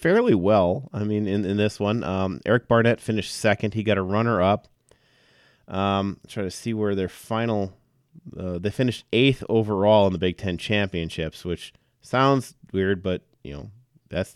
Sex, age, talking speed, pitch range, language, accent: male, 30-49, 170 wpm, 95-120 Hz, English, American